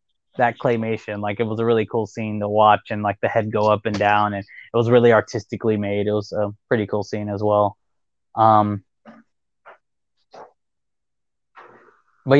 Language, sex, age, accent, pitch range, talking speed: English, male, 20-39, American, 105-125 Hz, 170 wpm